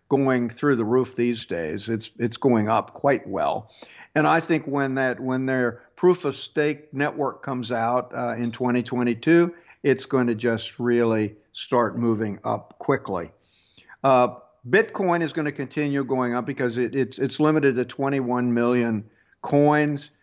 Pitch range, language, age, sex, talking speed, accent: 120-145 Hz, English, 60-79, male, 160 wpm, American